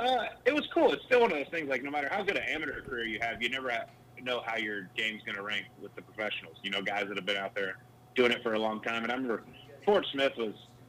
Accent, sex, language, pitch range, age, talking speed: American, male, English, 105-125 Hz, 30-49, 290 wpm